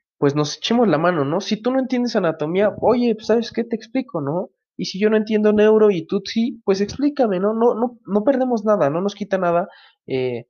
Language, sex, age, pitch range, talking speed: Spanish, male, 20-39, 140-205 Hz, 225 wpm